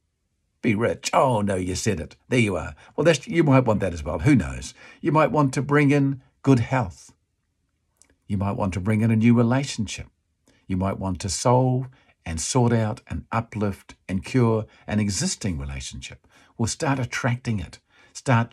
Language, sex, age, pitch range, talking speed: English, male, 50-69, 95-135 Hz, 180 wpm